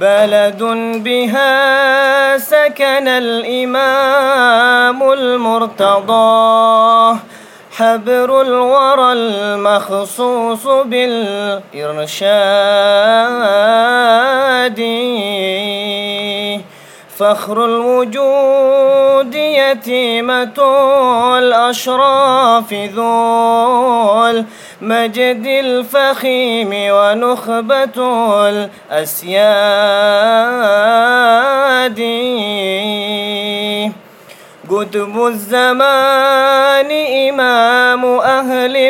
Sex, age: male, 20-39